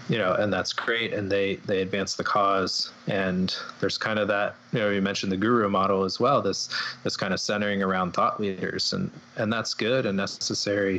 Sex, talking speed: male, 215 wpm